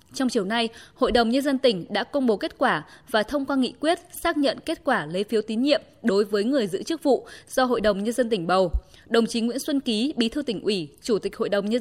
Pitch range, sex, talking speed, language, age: 210-270 Hz, female, 270 wpm, Vietnamese, 20-39